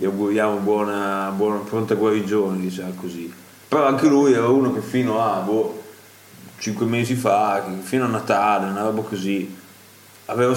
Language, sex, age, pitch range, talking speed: Italian, male, 20-39, 105-125 Hz, 155 wpm